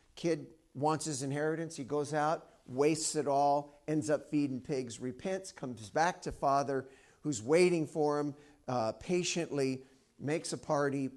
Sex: male